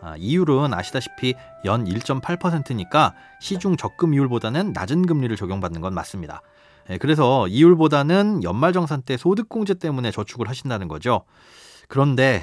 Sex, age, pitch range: male, 30-49, 115-170 Hz